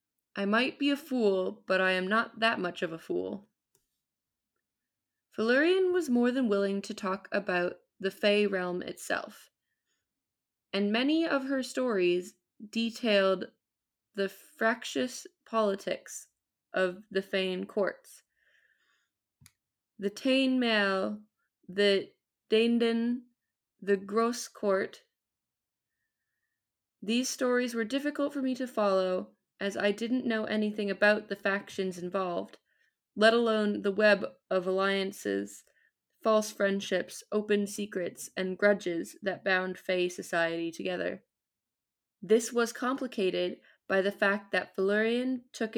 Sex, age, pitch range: female, 20-39, 190-230 Hz